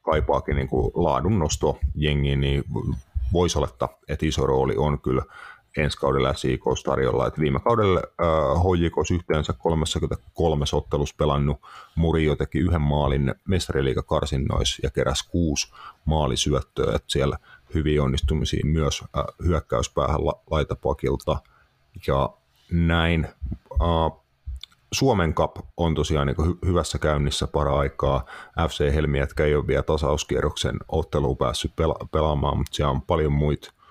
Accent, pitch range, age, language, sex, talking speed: native, 70-80 Hz, 30-49, Finnish, male, 120 wpm